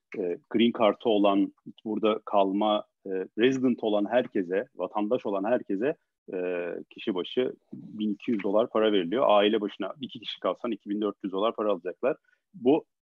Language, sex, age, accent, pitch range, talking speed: Turkish, male, 40-59, native, 100-110 Hz, 125 wpm